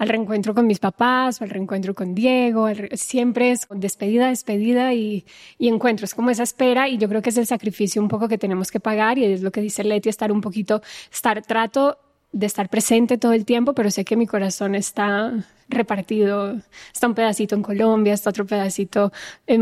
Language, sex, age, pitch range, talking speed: Spanish, female, 10-29, 210-245 Hz, 205 wpm